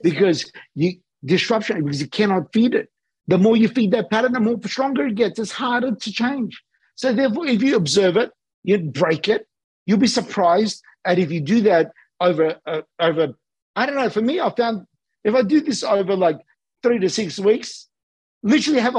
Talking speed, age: 195 wpm, 50-69